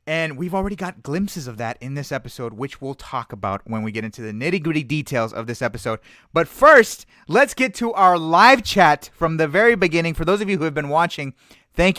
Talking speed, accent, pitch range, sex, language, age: 225 wpm, American, 130-175 Hz, male, English, 30-49